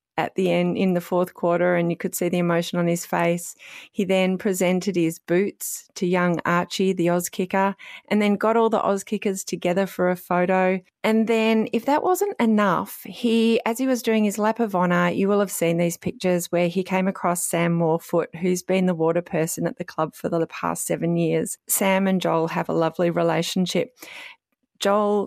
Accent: Australian